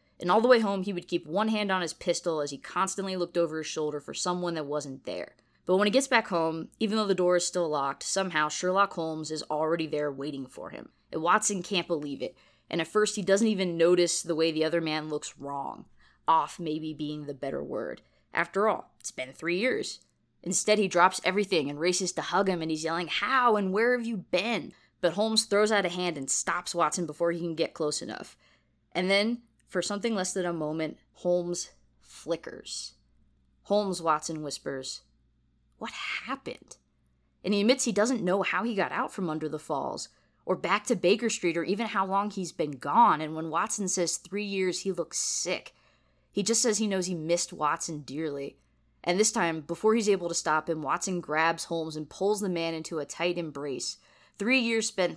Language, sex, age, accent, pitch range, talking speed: English, female, 20-39, American, 155-195 Hz, 210 wpm